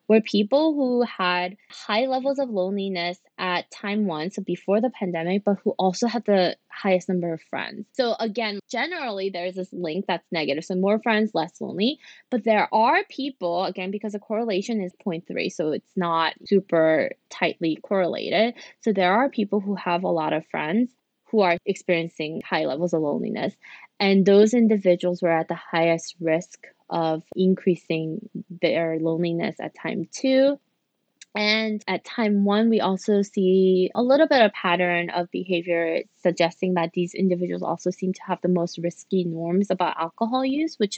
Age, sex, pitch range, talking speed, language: 20-39, female, 175-220 Hz, 170 wpm, English